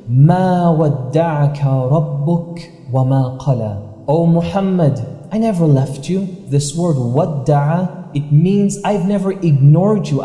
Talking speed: 110 wpm